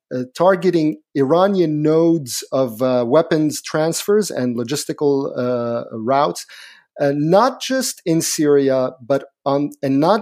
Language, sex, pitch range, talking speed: English, male, 125-160 Hz, 125 wpm